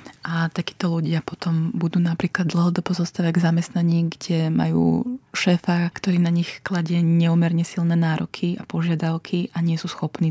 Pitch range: 150-175 Hz